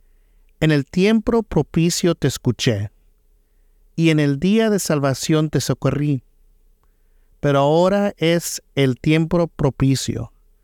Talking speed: 115 wpm